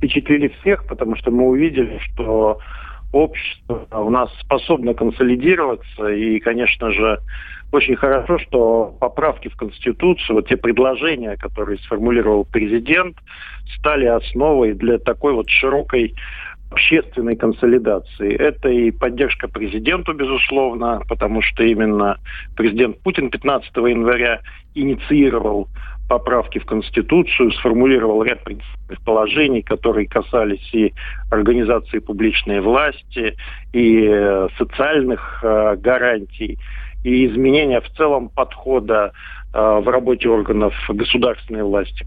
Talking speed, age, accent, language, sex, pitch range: 105 wpm, 50-69, native, Russian, male, 110-130 Hz